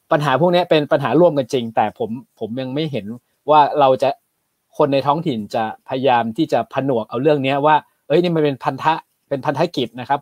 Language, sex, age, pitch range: Thai, male, 20-39, 125-165 Hz